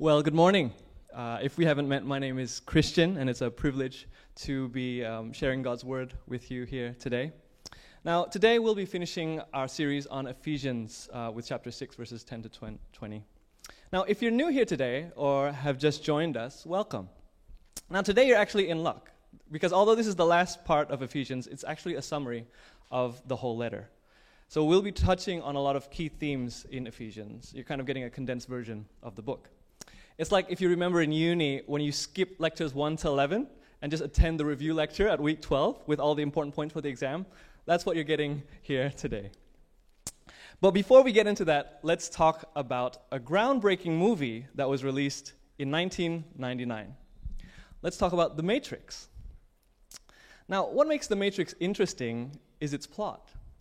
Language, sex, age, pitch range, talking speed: English, male, 20-39, 130-170 Hz, 190 wpm